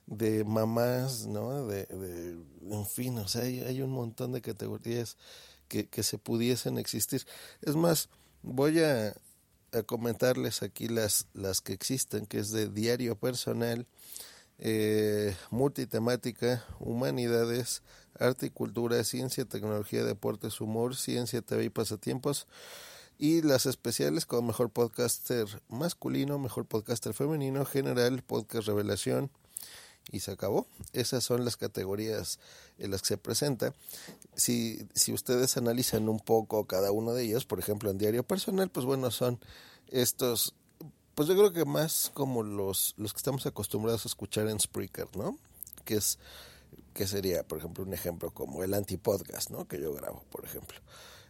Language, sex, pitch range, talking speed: Spanish, male, 105-125 Hz, 150 wpm